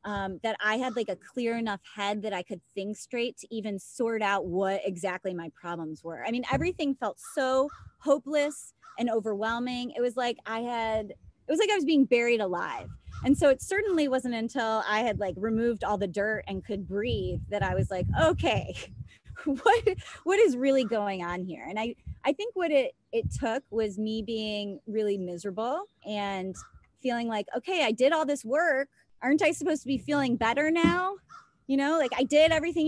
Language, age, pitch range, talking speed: English, 20-39, 215-295 Hz, 195 wpm